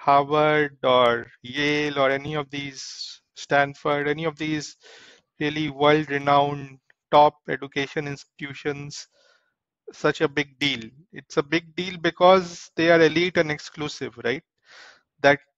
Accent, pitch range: Indian, 145-180 Hz